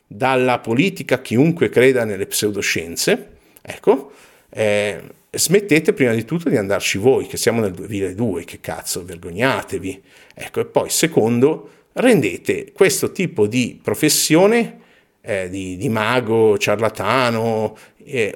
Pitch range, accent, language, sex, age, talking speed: 100-145 Hz, native, Italian, male, 50-69, 120 wpm